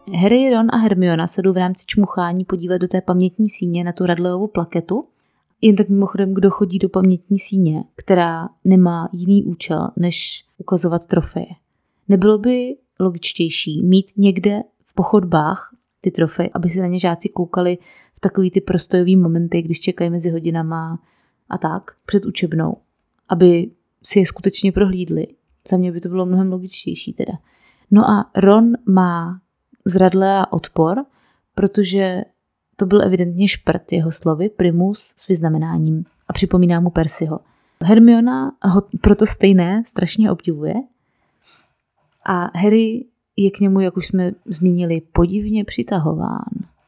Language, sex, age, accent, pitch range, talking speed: Czech, female, 20-39, native, 175-205 Hz, 145 wpm